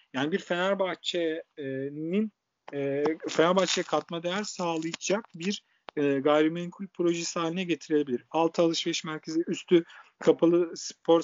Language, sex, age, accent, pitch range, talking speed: Turkish, male, 50-69, native, 155-205 Hz, 105 wpm